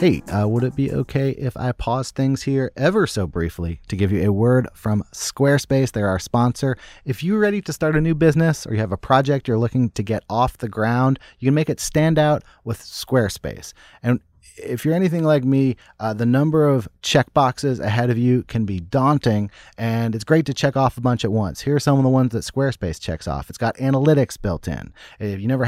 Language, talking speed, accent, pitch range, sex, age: English, 230 wpm, American, 110-145 Hz, male, 30-49